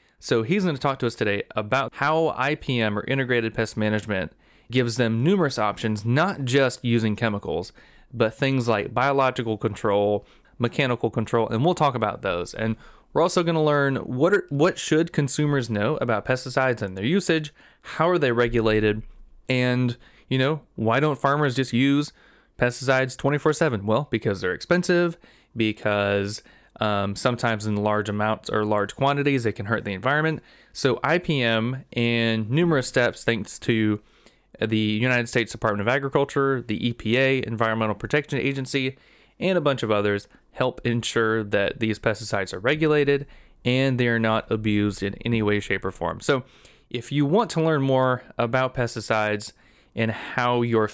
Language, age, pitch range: English, 30-49, 110-135 Hz